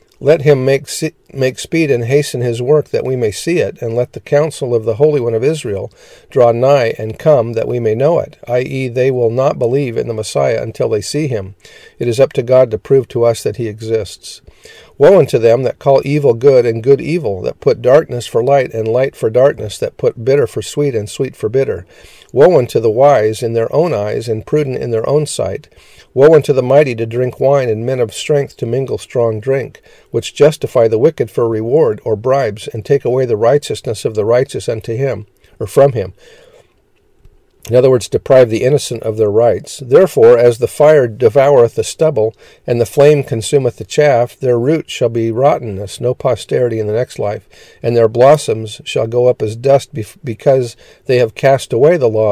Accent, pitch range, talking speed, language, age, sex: American, 115-150 Hz, 210 wpm, English, 50-69, male